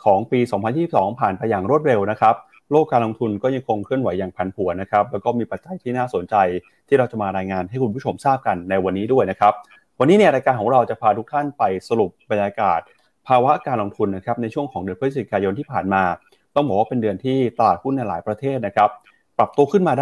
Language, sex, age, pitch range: Thai, male, 30-49, 100-135 Hz